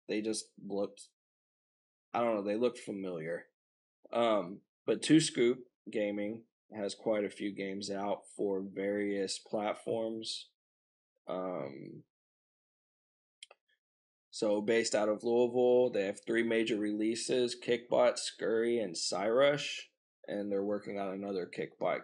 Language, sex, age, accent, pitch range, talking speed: English, male, 20-39, American, 100-110 Hz, 120 wpm